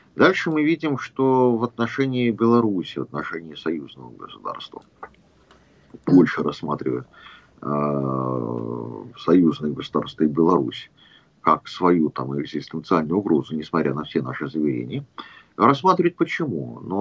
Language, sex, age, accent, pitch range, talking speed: Russian, male, 50-69, native, 80-125 Hz, 105 wpm